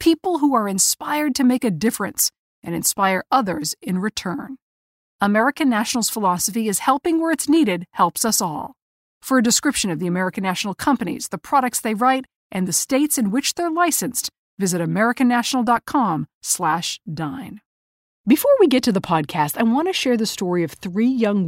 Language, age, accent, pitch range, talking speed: English, 50-69, American, 180-255 Hz, 170 wpm